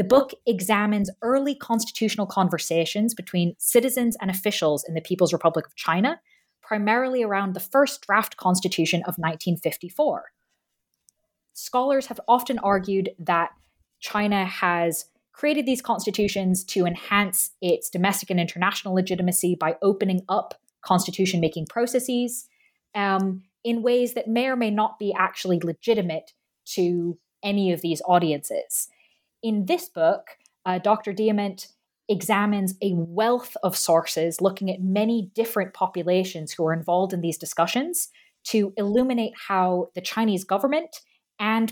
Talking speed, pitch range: 130 wpm, 175-225 Hz